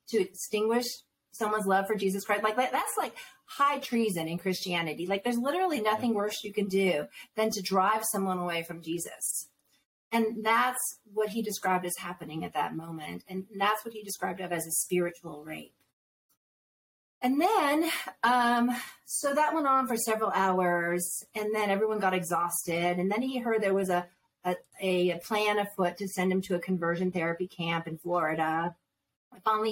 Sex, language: female, English